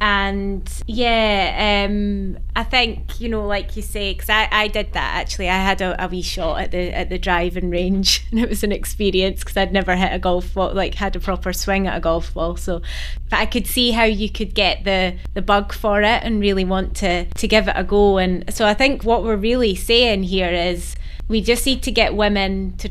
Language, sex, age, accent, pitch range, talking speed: English, female, 20-39, British, 185-210 Hz, 235 wpm